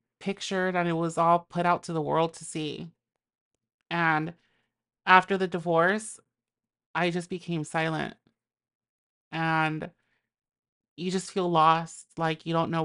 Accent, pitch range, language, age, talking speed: American, 160-180 Hz, English, 30-49, 135 wpm